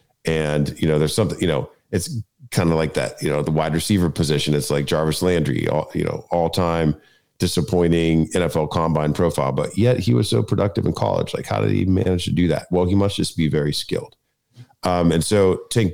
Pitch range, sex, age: 75-90 Hz, male, 40-59